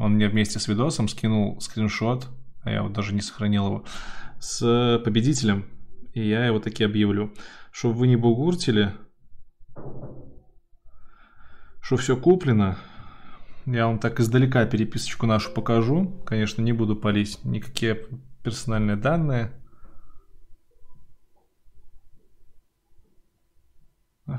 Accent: native